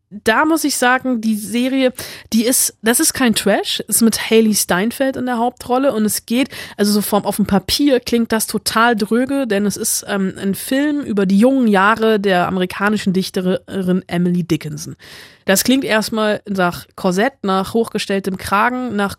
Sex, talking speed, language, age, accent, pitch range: female, 175 wpm, German, 20-39, German, 195-240 Hz